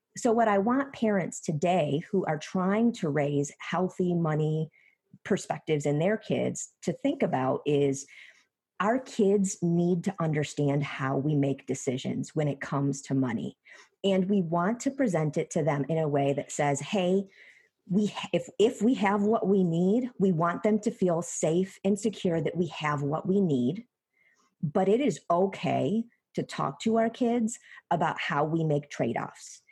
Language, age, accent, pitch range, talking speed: English, 40-59, American, 160-205 Hz, 170 wpm